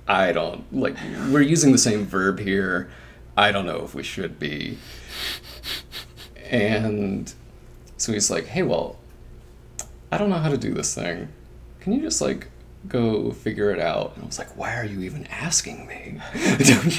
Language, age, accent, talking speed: English, 30-49, American, 175 wpm